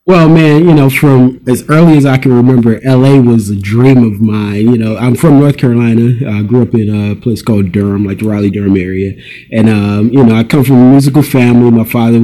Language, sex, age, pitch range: English, male, 30-49, 105-135 Hz